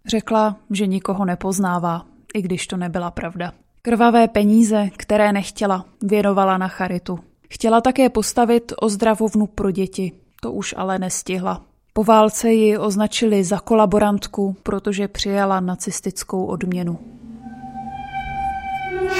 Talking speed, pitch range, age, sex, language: 115 wpm, 195-230 Hz, 20-39, female, Czech